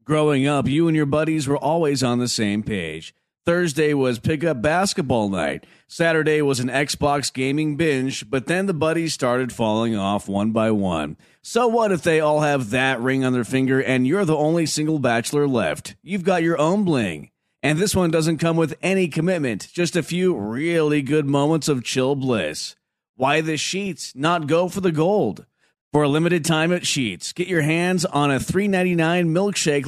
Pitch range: 130-170 Hz